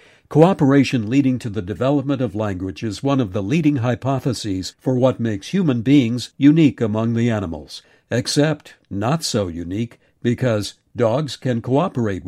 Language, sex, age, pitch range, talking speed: English, male, 60-79, 105-140 Hz, 145 wpm